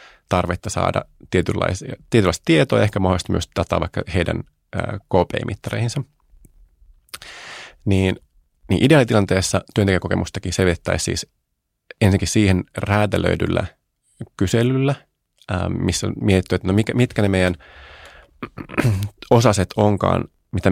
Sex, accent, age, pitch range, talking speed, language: male, native, 30-49, 90-115 Hz, 95 wpm, Finnish